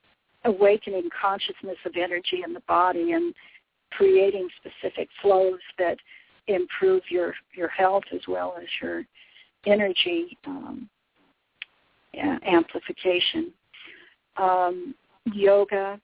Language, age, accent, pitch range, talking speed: English, 60-79, American, 185-275 Hz, 95 wpm